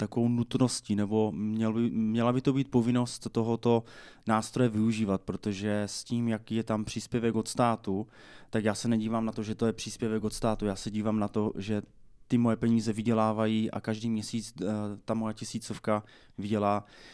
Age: 20-39